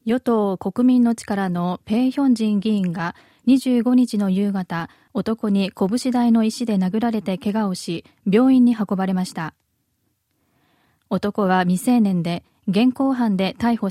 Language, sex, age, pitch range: Japanese, female, 20-39, 190-235 Hz